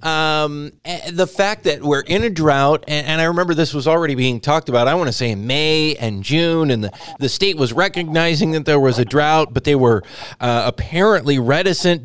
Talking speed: 215 wpm